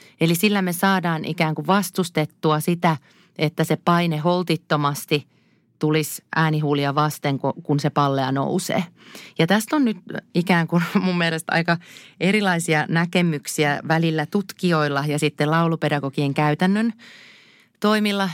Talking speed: 120 wpm